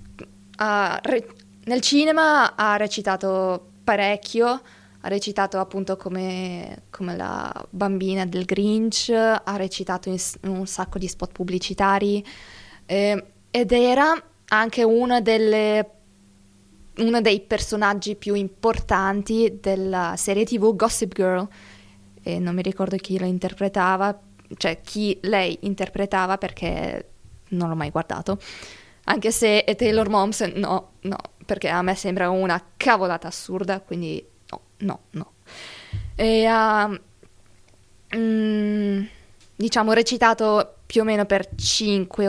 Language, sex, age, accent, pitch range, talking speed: Italian, female, 20-39, native, 185-225 Hz, 110 wpm